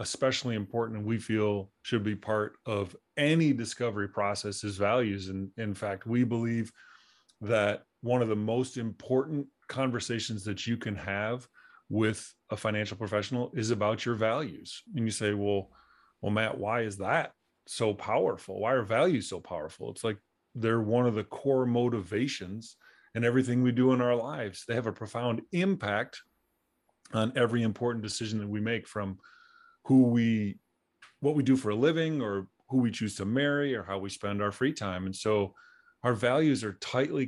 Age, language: 30-49, English